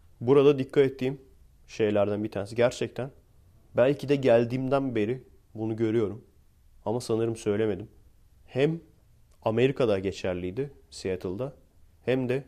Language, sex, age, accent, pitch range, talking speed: Turkish, male, 30-49, native, 100-130 Hz, 105 wpm